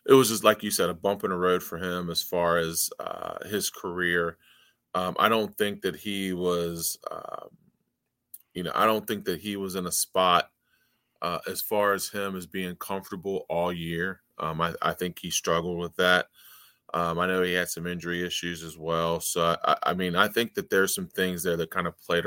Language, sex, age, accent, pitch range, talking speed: English, male, 30-49, American, 85-95 Hz, 220 wpm